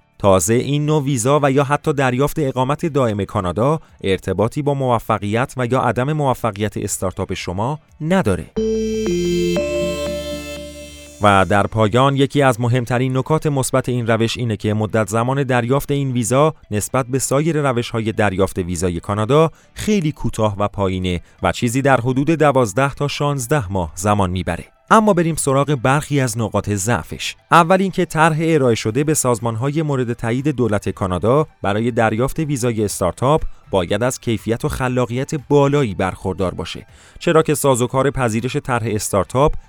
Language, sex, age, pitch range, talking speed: Persian, male, 30-49, 105-145 Hz, 145 wpm